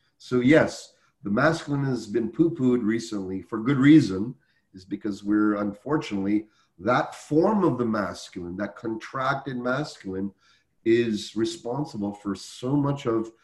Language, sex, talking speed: English, male, 130 wpm